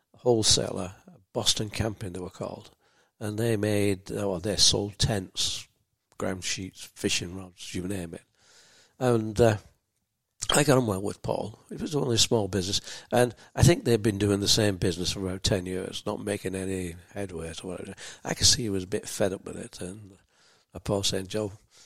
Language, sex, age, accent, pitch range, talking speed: English, male, 60-79, British, 95-110 Hz, 185 wpm